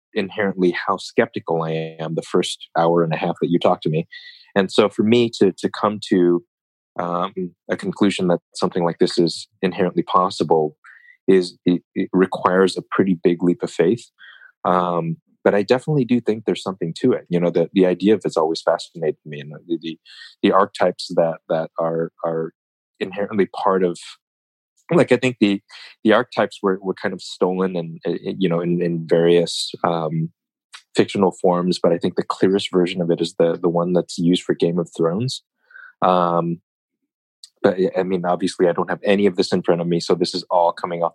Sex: male